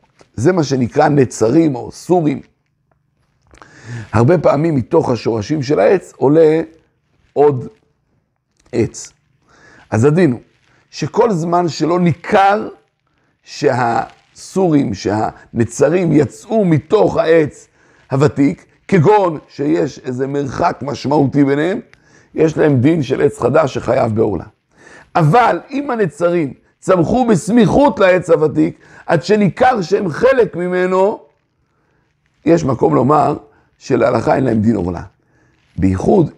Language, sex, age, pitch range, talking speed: Hebrew, male, 60-79, 130-175 Hz, 105 wpm